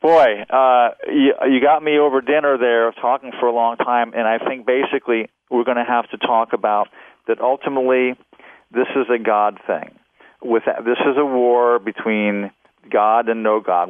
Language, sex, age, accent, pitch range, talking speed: English, male, 50-69, American, 115-150 Hz, 180 wpm